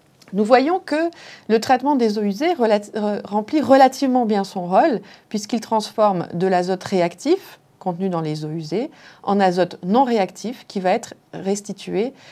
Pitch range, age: 175-235 Hz, 30-49